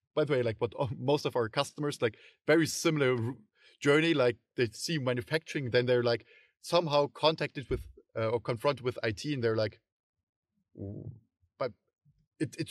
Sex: male